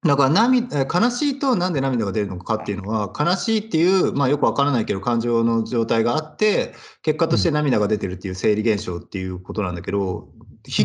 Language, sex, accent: Japanese, male, native